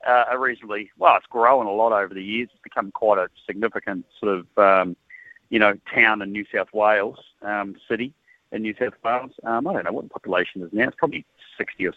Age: 40-59